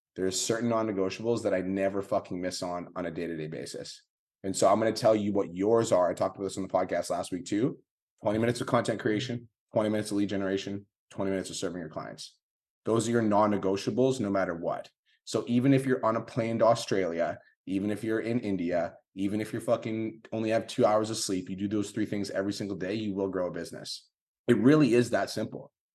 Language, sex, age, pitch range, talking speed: English, male, 20-39, 95-120 Hz, 230 wpm